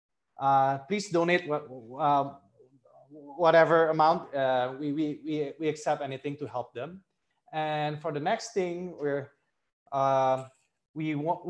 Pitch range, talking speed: 135-160 Hz, 130 wpm